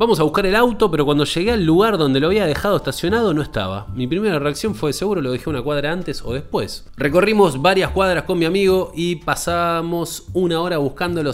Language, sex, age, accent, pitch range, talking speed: Spanish, male, 20-39, Argentinian, 130-180 Hz, 210 wpm